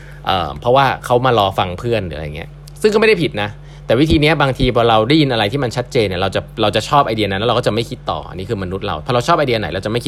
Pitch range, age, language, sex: 95-145 Hz, 20-39, Thai, male